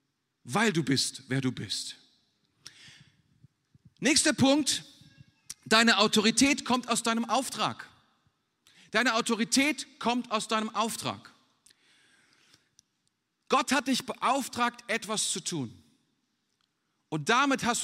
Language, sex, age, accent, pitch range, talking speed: German, male, 40-59, German, 170-235 Hz, 100 wpm